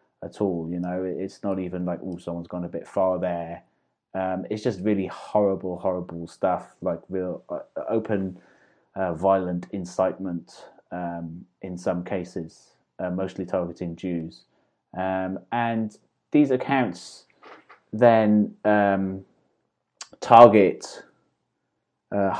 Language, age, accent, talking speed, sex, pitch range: English, 20-39, British, 120 wpm, male, 95-110 Hz